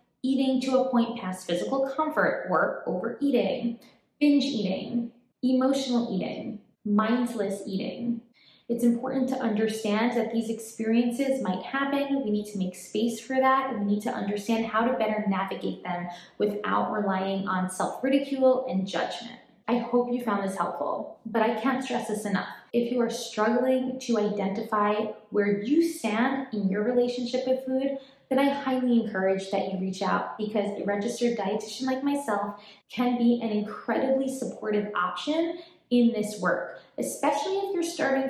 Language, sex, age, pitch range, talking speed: English, female, 20-39, 210-260 Hz, 160 wpm